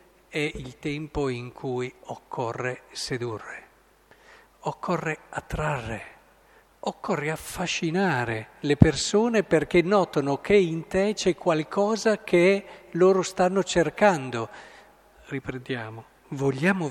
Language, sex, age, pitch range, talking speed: Italian, male, 50-69, 135-195 Hz, 90 wpm